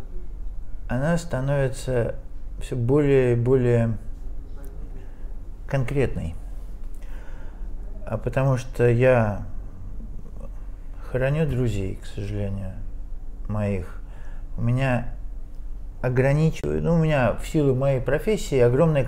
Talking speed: 85 wpm